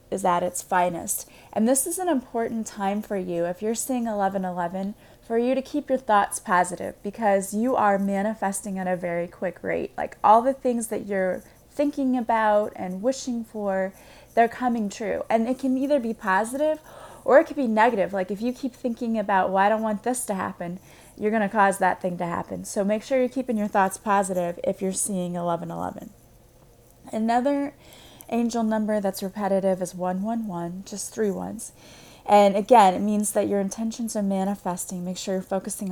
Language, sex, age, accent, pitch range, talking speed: English, female, 20-39, American, 185-230 Hz, 185 wpm